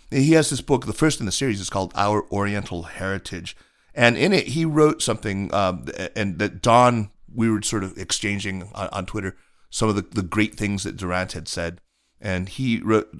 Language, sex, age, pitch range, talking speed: English, male, 40-59, 90-110 Hz, 205 wpm